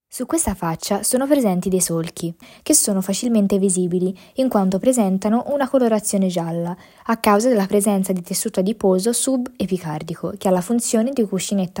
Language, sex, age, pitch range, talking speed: Italian, female, 20-39, 180-230 Hz, 160 wpm